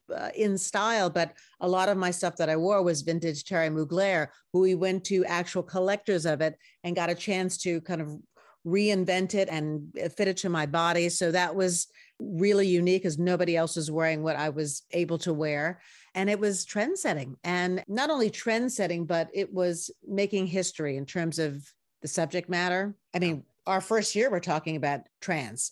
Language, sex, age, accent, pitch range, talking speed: English, female, 40-59, American, 165-195 Hz, 200 wpm